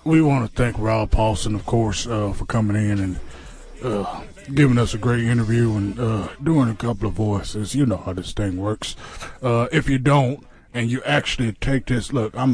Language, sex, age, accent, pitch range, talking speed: English, male, 20-39, American, 105-135 Hz, 205 wpm